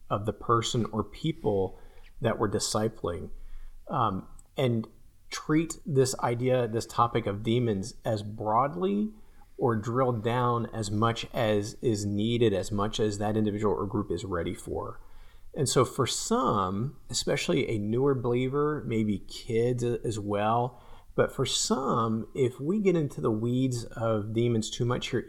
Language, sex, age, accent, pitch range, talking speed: English, male, 40-59, American, 105-130 Hz, 150 wpm